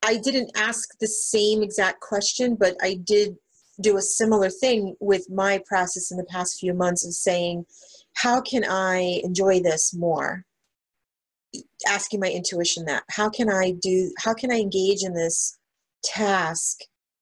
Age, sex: 30-49, female